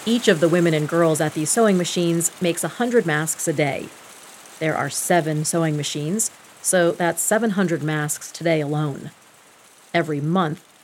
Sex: female